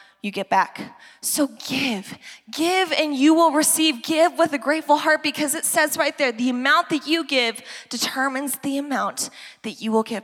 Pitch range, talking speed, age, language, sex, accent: 230-300 Hz, 190 wpm, 20-39, English, female, American